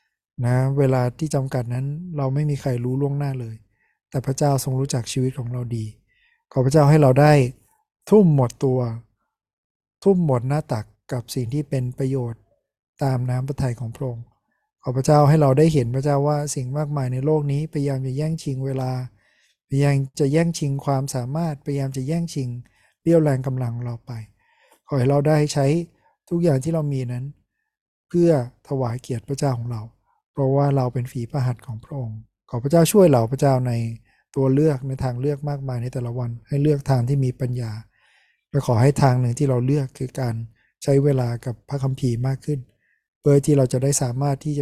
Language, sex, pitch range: Thai, male, 125-145 Hz